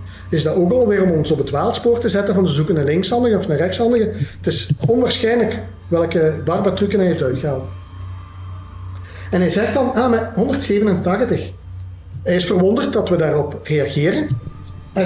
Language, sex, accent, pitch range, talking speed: Dutch, male, Dutch, 135-190 Hz, 170 wpm